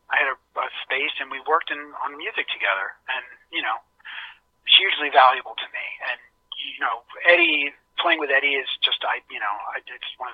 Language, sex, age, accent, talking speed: English, male, 30-49, American, 205 wpm